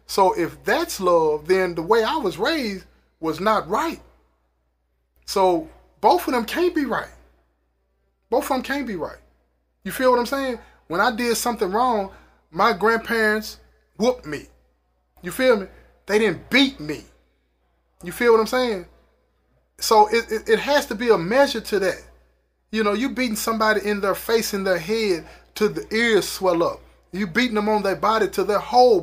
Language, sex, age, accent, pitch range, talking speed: English, male, 20-39, American, 150-225 Hz, 180 wpm